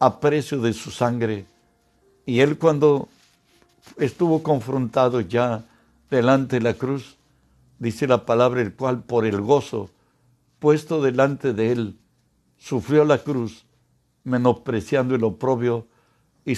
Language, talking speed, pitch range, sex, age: Spanish, 125 wpm, 120-150 Hz, male, 60-79